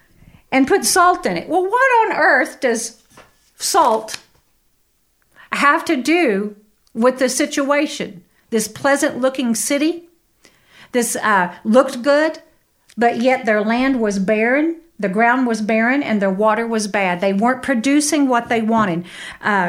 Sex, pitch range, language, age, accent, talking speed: female, 220-285 Hz, English, 50-69, American, 145 wpm